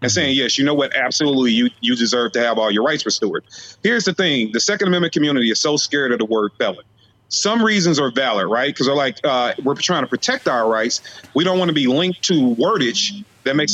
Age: 30-49